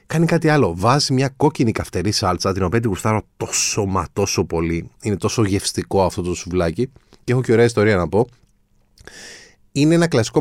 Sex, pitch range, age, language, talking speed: male, 100-145 Hz, 30-49, Greek, 180 wpm